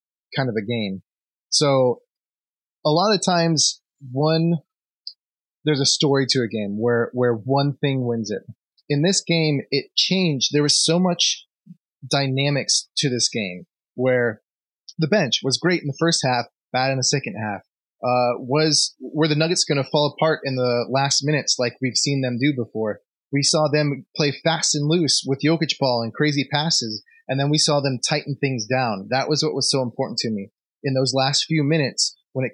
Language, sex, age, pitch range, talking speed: English, male, 20-39, 125-150 Hz, 190 wpm